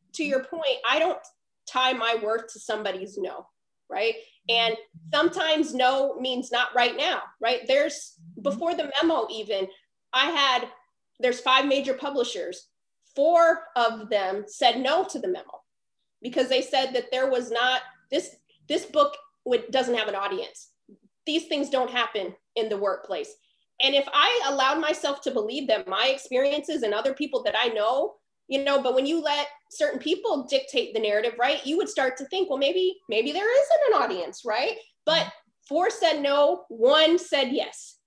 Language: English